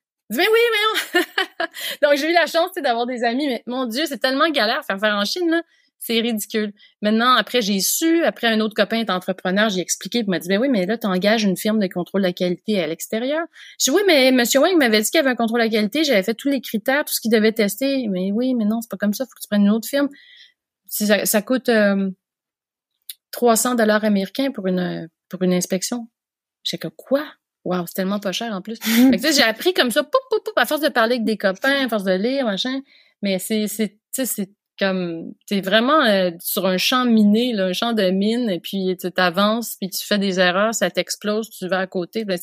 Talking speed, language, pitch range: 250 wpm, French, 195-270 Hz